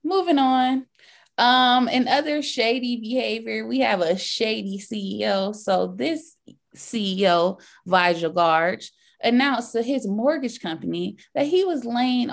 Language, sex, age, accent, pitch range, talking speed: English, female, 20-39, American, 175-255 Hz, 125 wpm